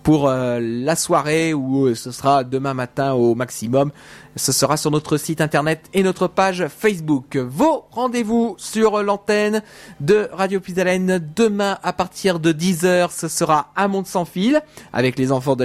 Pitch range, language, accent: 135-195 Hz, French, French